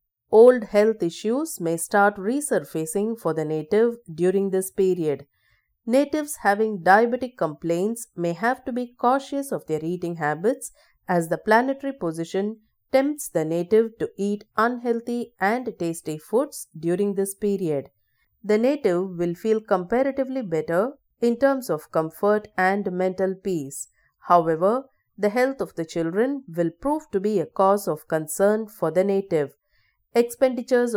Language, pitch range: English, 170-235 Hz